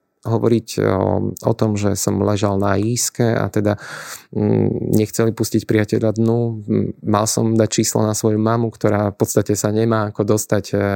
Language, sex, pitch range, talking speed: Slovak, male, 100-115 Hz, 160 wpm